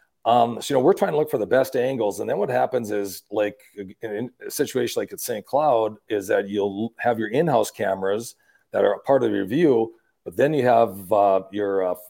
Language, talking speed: English, 230 wpm